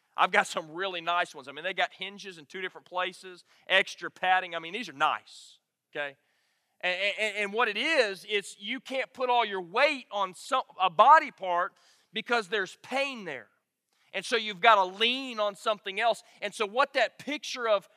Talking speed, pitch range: 195 wpm, 185-240 Hz